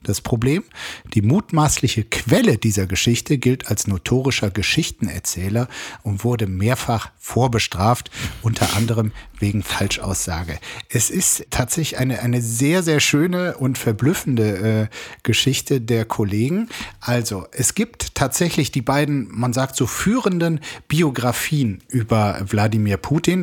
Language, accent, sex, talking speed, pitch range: German, German, male, 120 wpm, 115-140 Hz